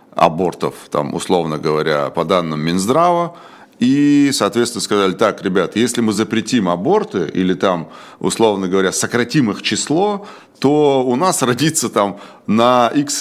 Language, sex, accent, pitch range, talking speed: Russian, male, native, 90-125 Hz, 125 wpm